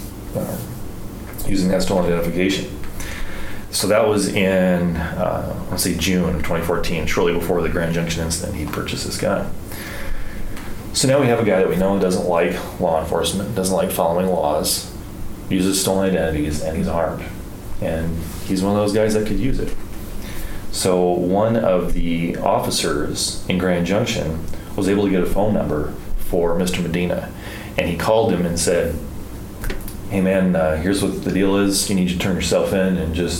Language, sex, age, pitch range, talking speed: English, male, 30-49, 85-100 Hz, 180 wpm